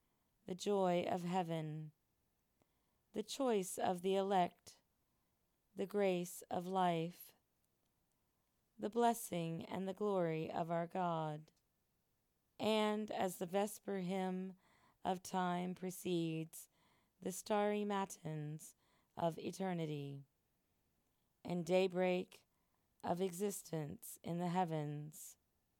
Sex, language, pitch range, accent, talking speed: female, English, 170-200 Hz, American, 95 wpm